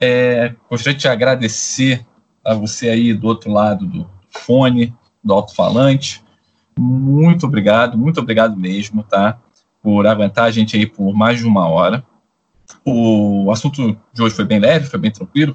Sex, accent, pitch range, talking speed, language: male, Brazilian, 115-160 Hz, 150 wpm, Portuguese